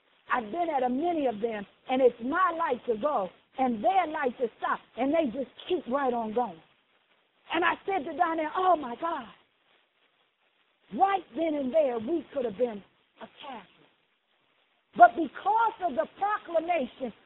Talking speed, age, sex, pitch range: 165 wpm, 50-69, female, 250-355 Hz